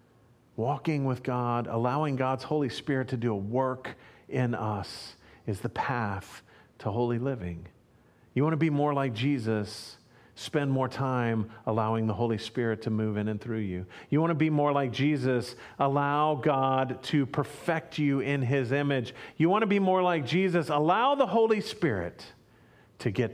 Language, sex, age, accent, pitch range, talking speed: English, male, 40-59, American, 120-160 Hz, 170 wpm